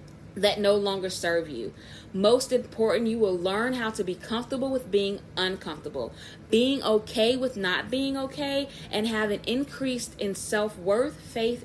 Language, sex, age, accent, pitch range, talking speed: English, female, 20-39, American, 180-230 Hz, 155 wpm